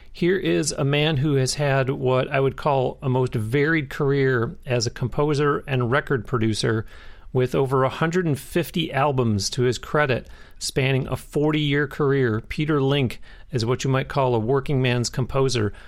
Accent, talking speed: American, 165 wpm